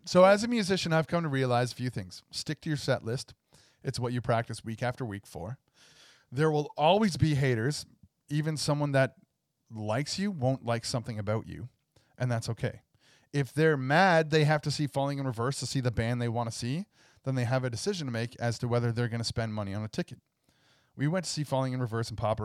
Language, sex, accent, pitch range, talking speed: English, male, American, 115-145 Hz, 235 wpm